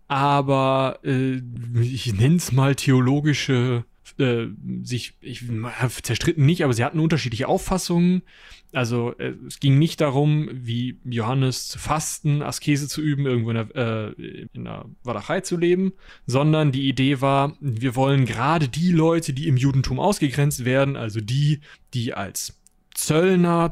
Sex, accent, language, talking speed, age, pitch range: male, German, German, 145 wpm, 30-49, 125-150 Hz